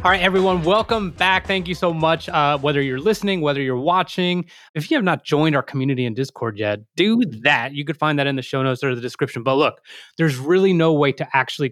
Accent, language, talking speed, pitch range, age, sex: American, English, 240 wpm, 130-180 Hz, 20-39, male